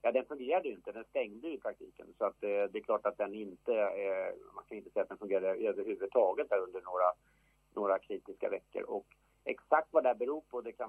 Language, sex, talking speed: English, male, 235 wpm